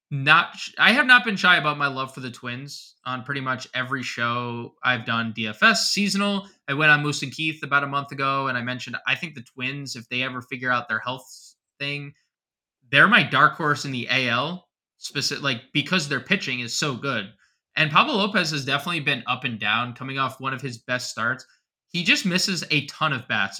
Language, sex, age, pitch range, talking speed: English, male, 20-39, 125-150 Hz, 215 wpm